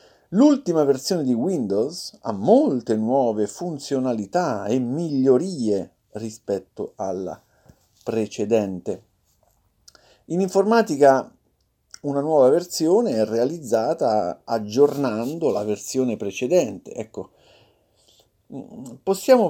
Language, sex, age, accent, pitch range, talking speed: Italian, male, 50-69, native, 105-140 Hz, 80 wpm